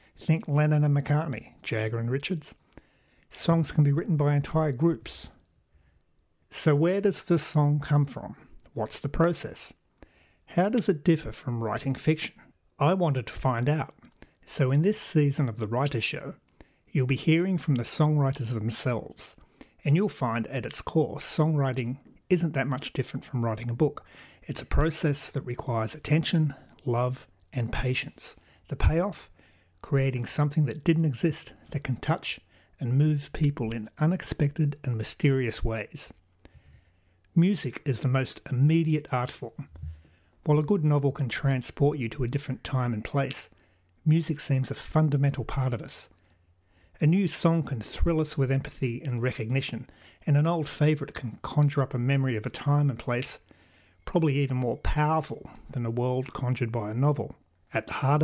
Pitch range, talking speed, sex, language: 120-150 Hz, 165 wpm, male, English